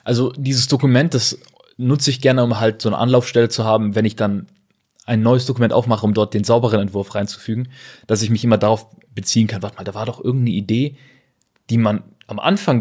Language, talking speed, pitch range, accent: German, 210 wpm, 105-125 Hz, German